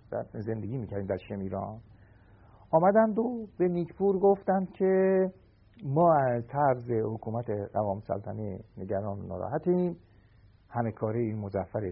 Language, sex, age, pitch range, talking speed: Persian, male, 50-69, 105-165 Hz, 105 wpm